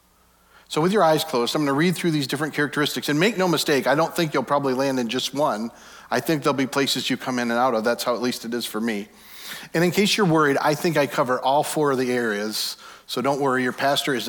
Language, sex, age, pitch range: English, male, 40-59, 110-145 Hz